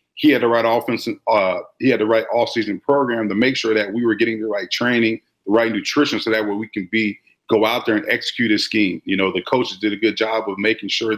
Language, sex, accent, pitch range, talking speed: English, male, American, 105-120 Hz, 260 wpm